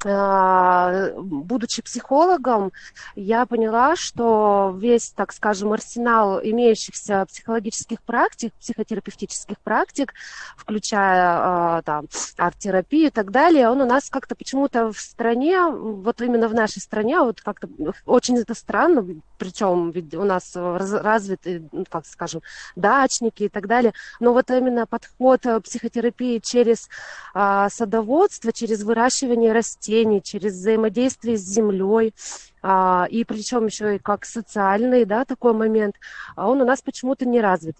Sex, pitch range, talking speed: female, 200-245 Hz, 120 wpm